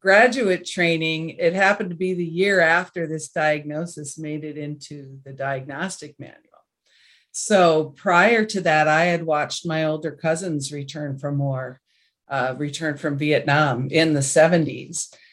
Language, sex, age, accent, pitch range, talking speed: English, female, 40-59, American, 150-185 Hz, 145 wpm